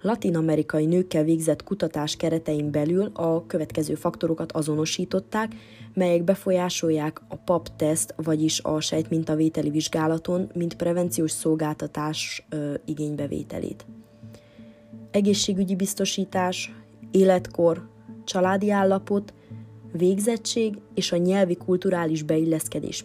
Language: Hungarian